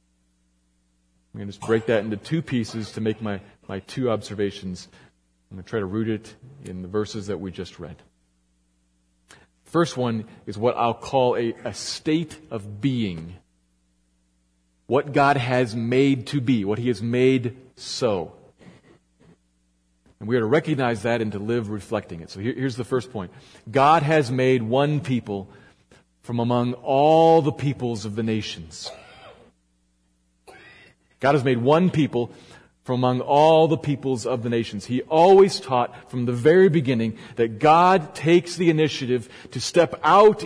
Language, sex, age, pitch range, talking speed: English, male, 40-59, 100-155 Hz, 160 wpm